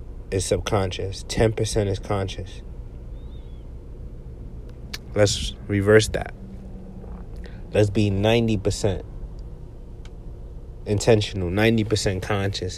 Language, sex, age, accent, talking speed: English, male, 30-49, American, 65 wpm